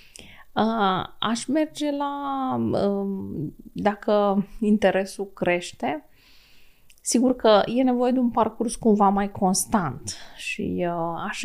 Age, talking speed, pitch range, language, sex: 20-39, 95 wpm, 175-230 Hz, Romanian, female